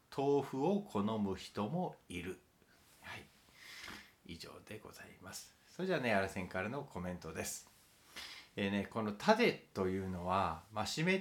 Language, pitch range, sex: Japanese, 95-140 Hz, male